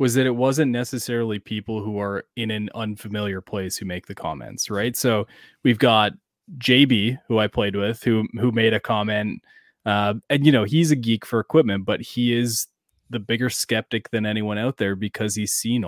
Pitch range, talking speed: 105-125 Hz, 195 wpm